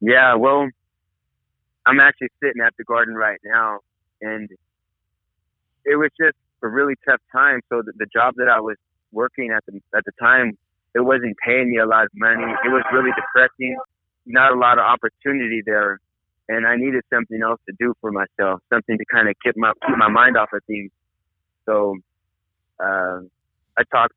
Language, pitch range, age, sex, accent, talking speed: English, 100-120 Hz, 30-49, male, American, 185 wpm